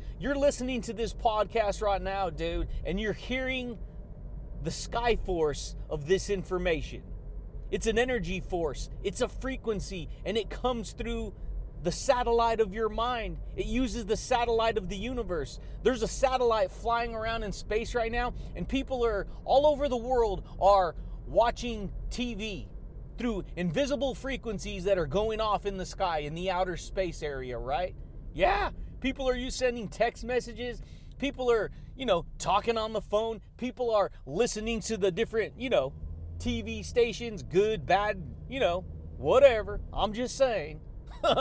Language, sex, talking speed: English, male, 155 wpm